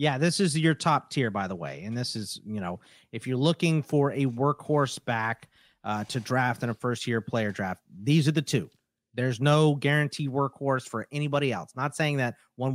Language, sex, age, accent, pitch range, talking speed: English, male, 30-49, American, 120-155 Hz, 210 wpm